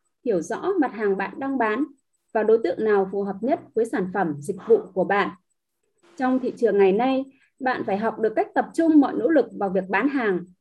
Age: 20-39